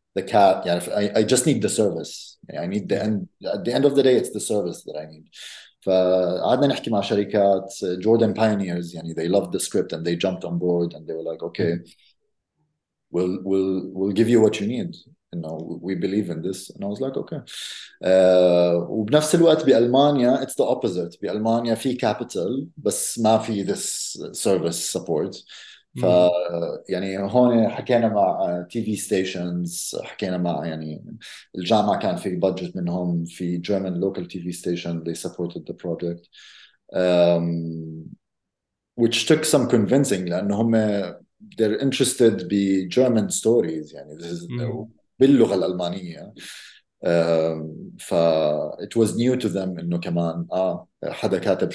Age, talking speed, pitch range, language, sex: 30-49, 160 wpm, 85-115 Hz, Arabic, male